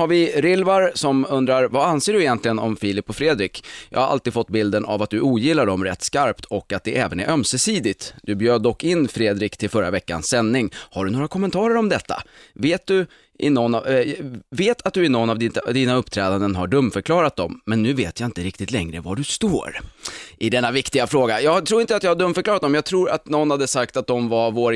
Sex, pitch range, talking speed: male, 100-135 Hz, 235 wpm